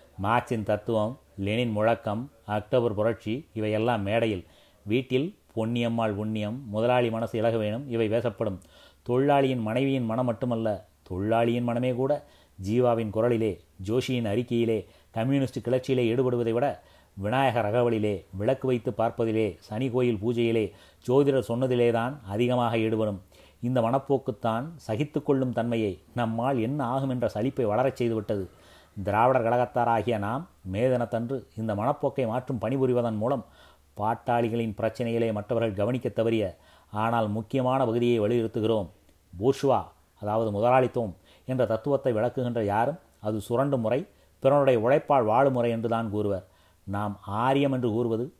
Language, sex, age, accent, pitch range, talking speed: Tamil, male, 30-49, native, 105-125 Hz, 115 wpm